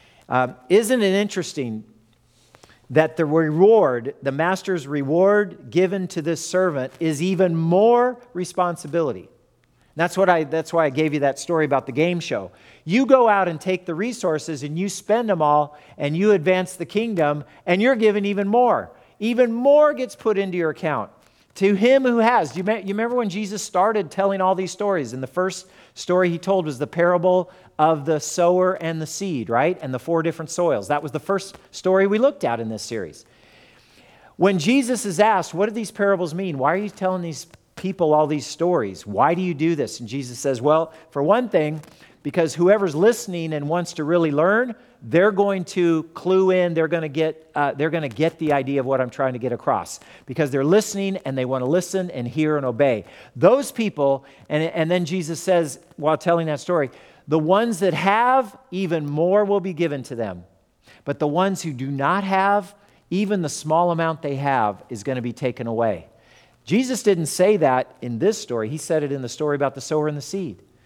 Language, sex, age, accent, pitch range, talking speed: English, male, 50-69, American, 145-195 Hz, 200 wpm